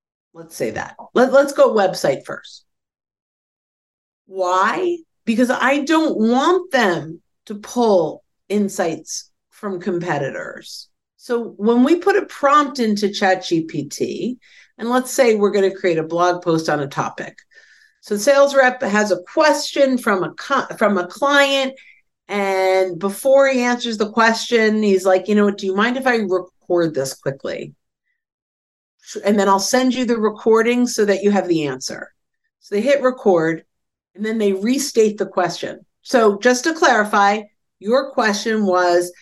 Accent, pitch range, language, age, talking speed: American, 195-255 Hz, English, 50-69, 150 wpm